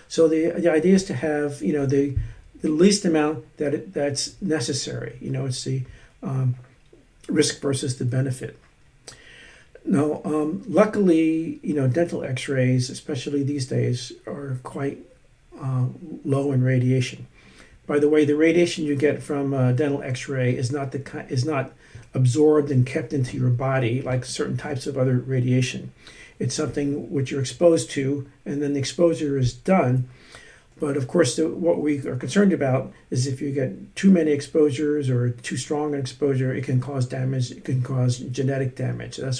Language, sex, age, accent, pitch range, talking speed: English, male, 50-69, American, 130-155 Hz, 170 wpm